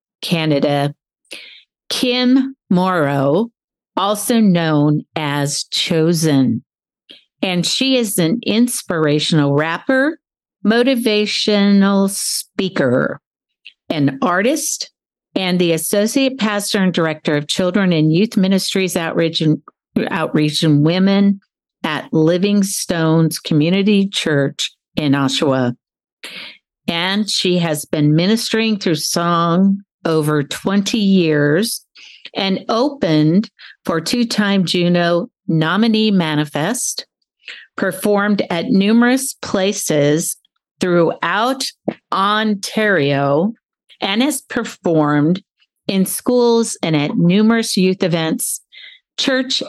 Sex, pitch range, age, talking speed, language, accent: female, 155-220 Hz, 50-69, 90 wpm, English, American